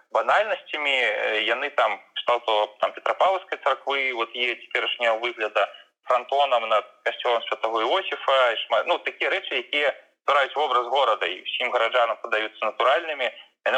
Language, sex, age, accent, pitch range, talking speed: Russian, male, 20-39, native, 115-145 Hz, 130 wpm